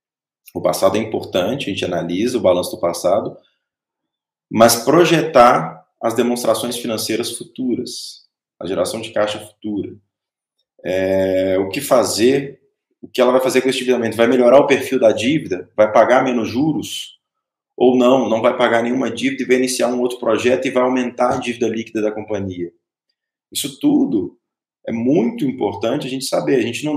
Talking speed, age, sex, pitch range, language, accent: 170 wpm, 20-39, male, 100-130 Hz, Portuguese, Brazilian